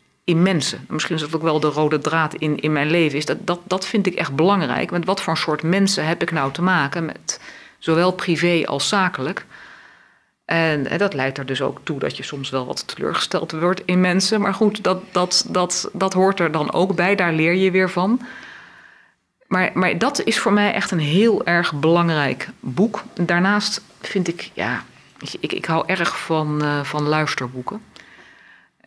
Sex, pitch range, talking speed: female, 145-180 Hz, 200 wpm